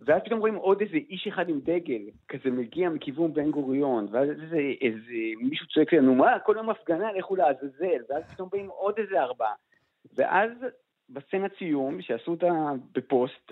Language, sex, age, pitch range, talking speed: Hebrew, male, 50-69, 140-230 Hz, 180 wpm